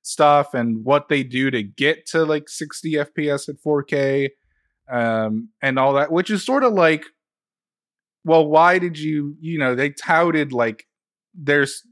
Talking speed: 160 wpm